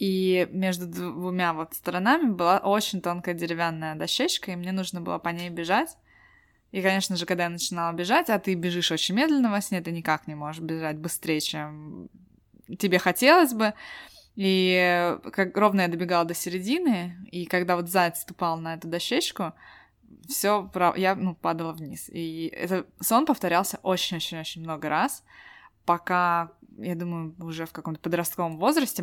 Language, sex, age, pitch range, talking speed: Russian, female, 20-39, 165-190 Hz, 155 wpm